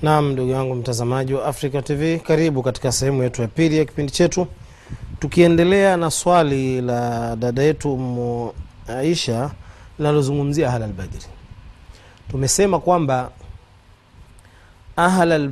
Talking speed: 110 wpm